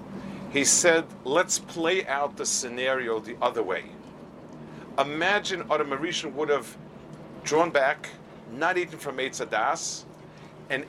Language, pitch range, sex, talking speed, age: English, 130-180 Hz, male, 120 wpm, 50-69